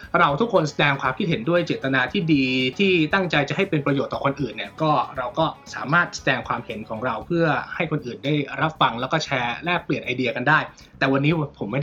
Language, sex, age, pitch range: Thai, male, 20-39, 135-175 Hz